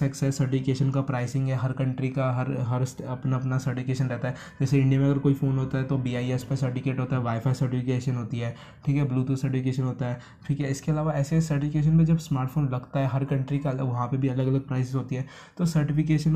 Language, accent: Hindi, native